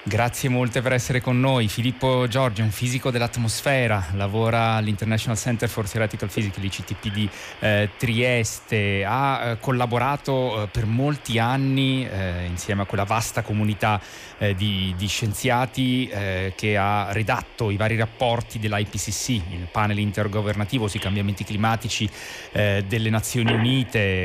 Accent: native